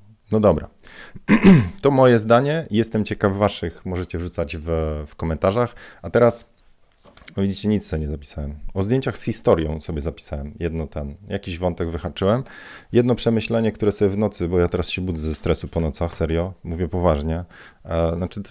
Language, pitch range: Polish, 80-100 Hz